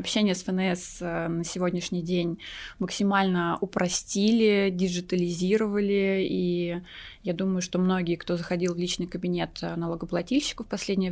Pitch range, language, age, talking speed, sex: 180-215 Hz, Russian, 20-39, 120 wpm, female